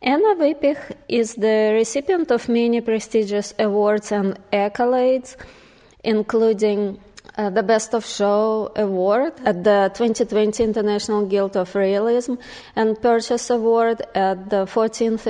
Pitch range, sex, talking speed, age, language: 200-230 Hz, female, 120 wpm, 20-39, English